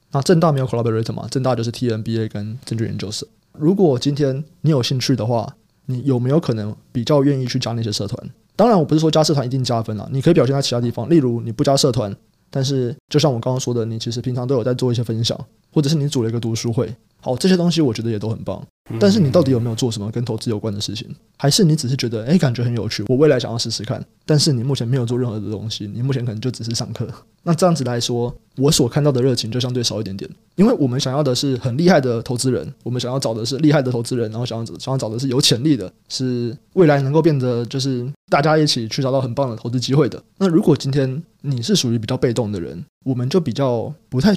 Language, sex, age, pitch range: Chinese, male, 20-39, 115-145 Hz